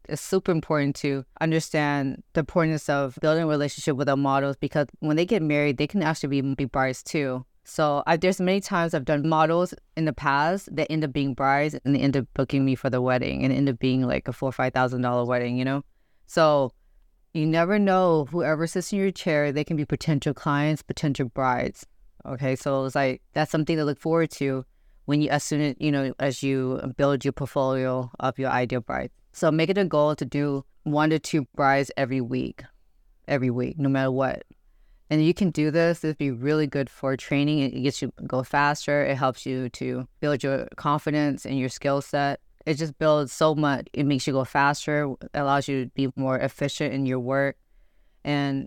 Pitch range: 135-155 Hz